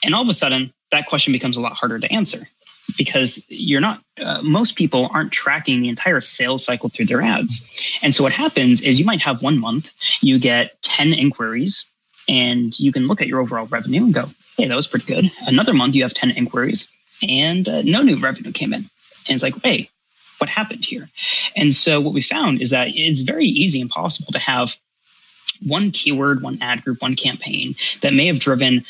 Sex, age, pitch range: male, 20-39, 125-165 Hz